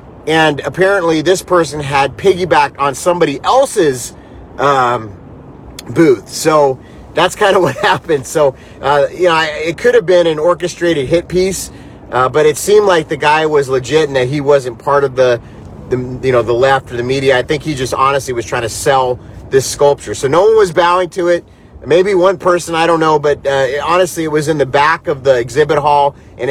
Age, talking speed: 30-49, 200 wpm